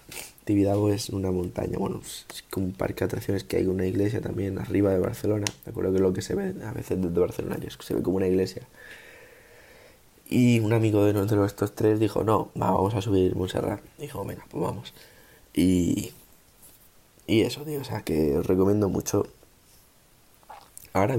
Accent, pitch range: Spanish, 95-110 Hz